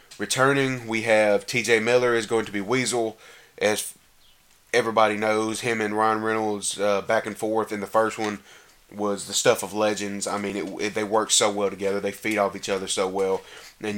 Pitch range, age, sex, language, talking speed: 100-115 Hz, 30-49, male, English, 200 wpm